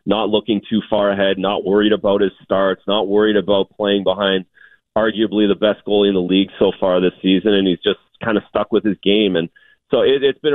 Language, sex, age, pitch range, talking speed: English, male, 30-49, 100-115 Hz, 230 wpm